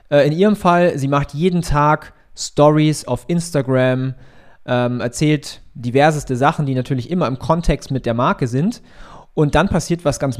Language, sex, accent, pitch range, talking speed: German, male, German, 130-165 Hz, 160 wpm